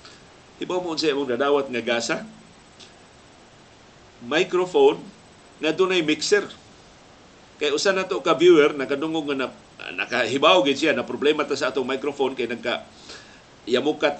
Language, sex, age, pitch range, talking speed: Filipino, male, 50-69, 130-160 Hz, 130 wpm